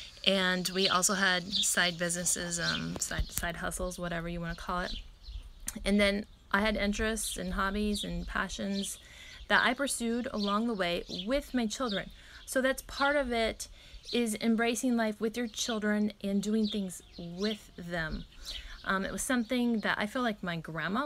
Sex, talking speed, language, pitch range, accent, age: female, 170 wpm, English, 185-235 Hz, American, 20-39